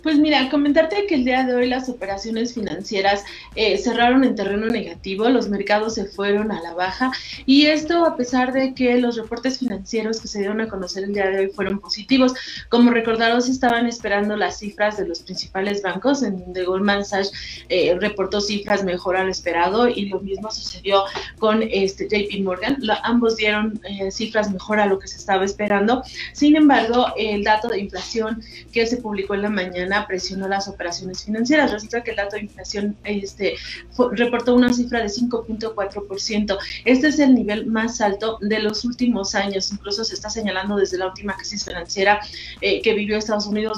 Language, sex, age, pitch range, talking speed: Spanish, female, 30-49, 200-235 Hz, 190 wpm